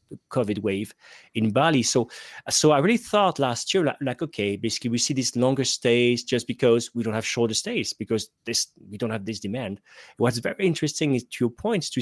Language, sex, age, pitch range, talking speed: English, male, 30-49, 110-140 Hz, 215 wpm